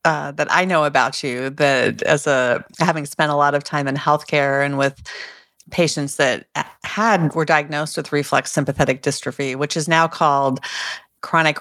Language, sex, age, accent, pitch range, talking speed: English, female, 40-59, American, 140-180 Hz, 170 wpm